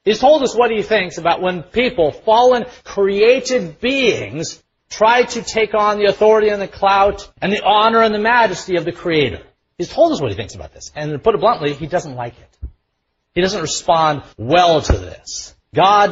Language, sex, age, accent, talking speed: English, male, 40-59, American, 200 wpm